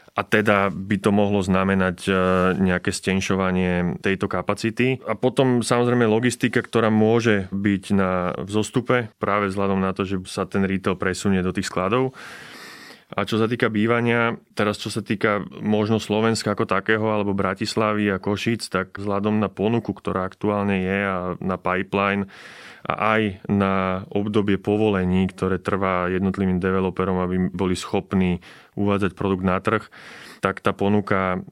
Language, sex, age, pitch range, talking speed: Slovak, male, 20-39, 90-105 Hz, 145 wpm